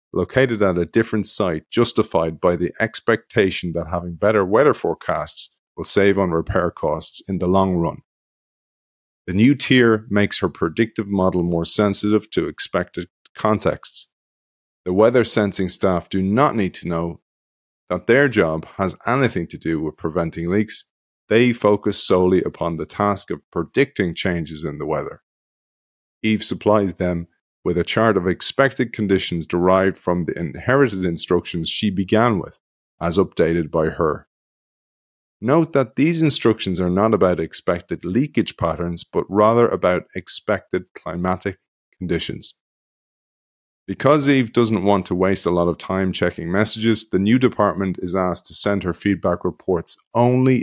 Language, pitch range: English, 85-110 Hz